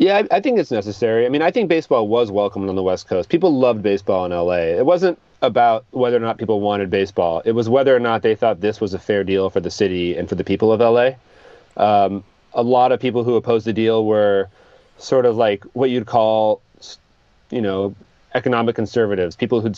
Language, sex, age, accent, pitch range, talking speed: English, male, 30-49, American, 95-115 Hz, 225 wpm